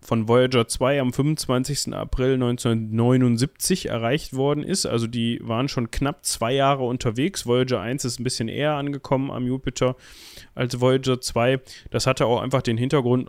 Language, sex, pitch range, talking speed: German, male, 115-135 Hz, 165 wpm